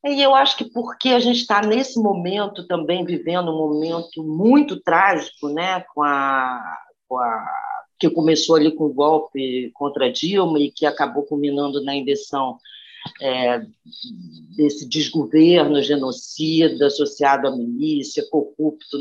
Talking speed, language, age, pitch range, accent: 140 wpm, Portuguese, 40-59, 155-240 Hz, Brazilian